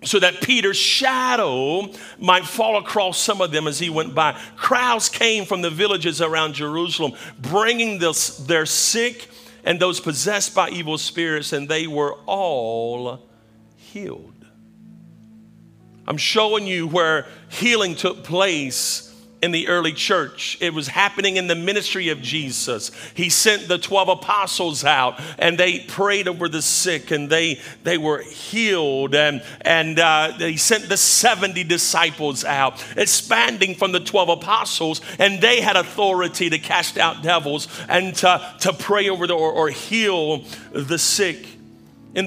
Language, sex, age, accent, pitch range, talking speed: English, male, 50-69, American, 160-205 Hz, 150 wpm